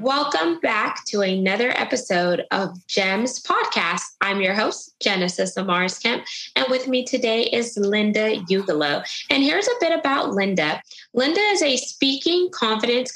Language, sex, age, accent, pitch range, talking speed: English, female, 20-39, American, 195-255 Hz, 145 wpm